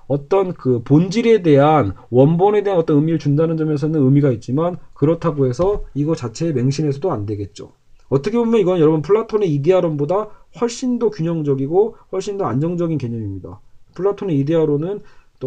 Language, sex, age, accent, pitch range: Korean, male, 40-59, native, 130-190 Hz